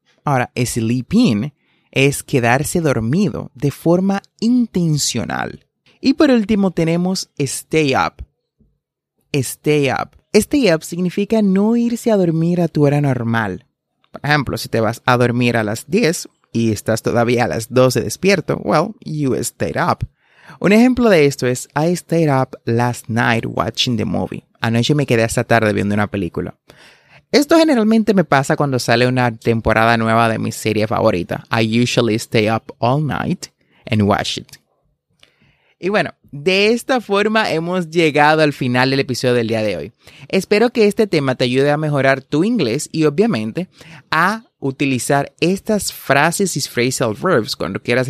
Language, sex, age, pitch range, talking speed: Spanish, male, 30-49, 115-180 Hz, 160 wpm